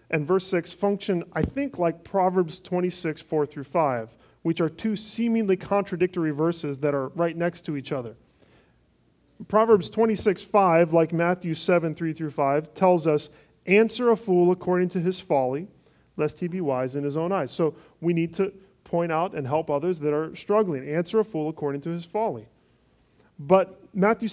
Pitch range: 140-180 Hz